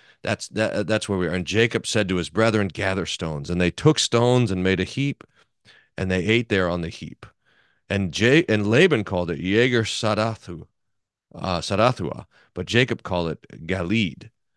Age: 40-59